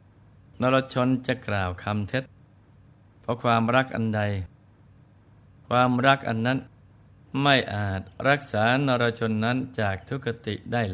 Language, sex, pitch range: Thai, male, 105-130 Hz